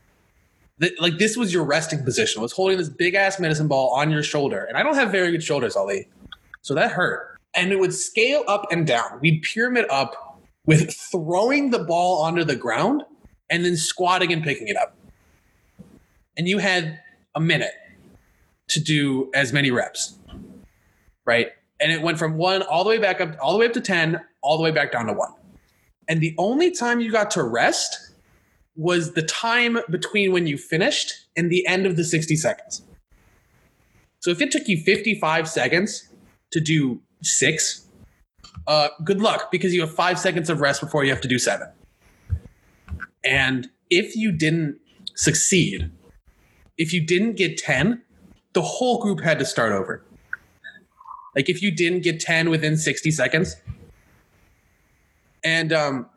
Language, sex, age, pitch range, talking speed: English, male, 20-39, 145-190 Hz, 170 wpm